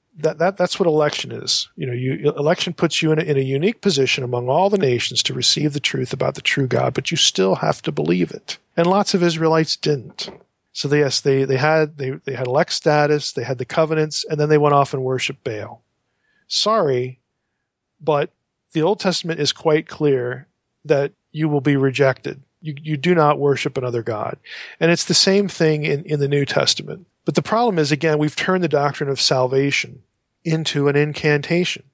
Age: 40-59